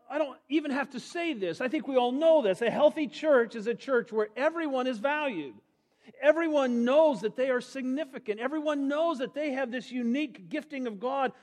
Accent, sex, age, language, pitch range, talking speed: American, male, 50-69, English, 195-270 Hz, 205 wpm